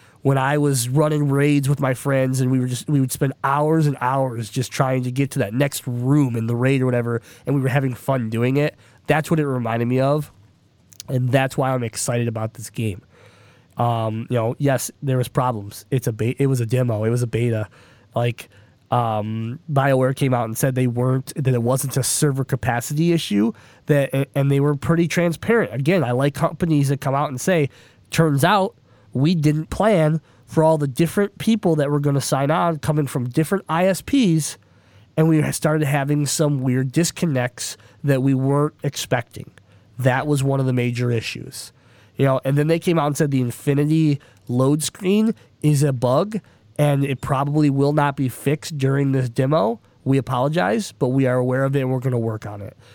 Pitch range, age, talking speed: 125-150 Hz, 20-39, 205 wpm